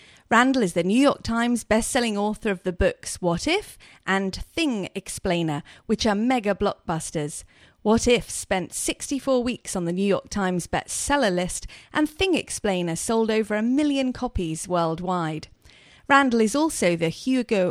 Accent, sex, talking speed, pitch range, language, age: British, female, 155 wpm, 180-245 Hz, English, 40-59